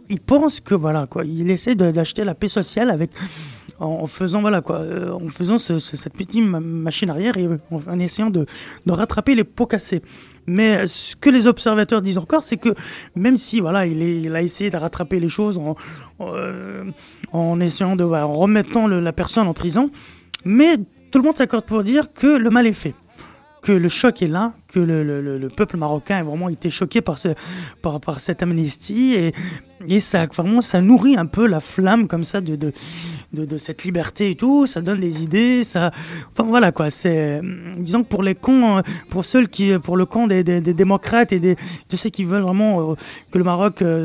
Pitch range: 165-215 Hz